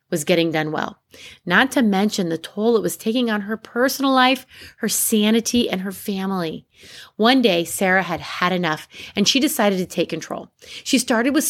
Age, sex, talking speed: 30-49, female, 190 wpm